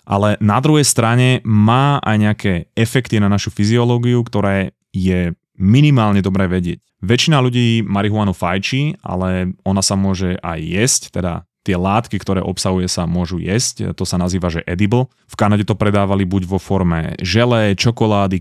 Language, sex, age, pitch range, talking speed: Slovak, male, 30-49, 95-120 Hz, 155 wpm